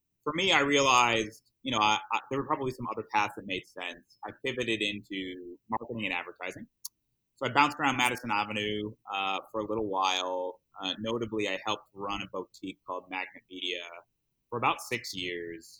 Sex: male